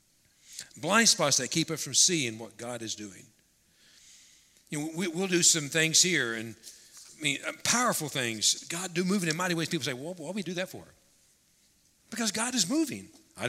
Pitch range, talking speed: 120-160 Hz, 195 wpm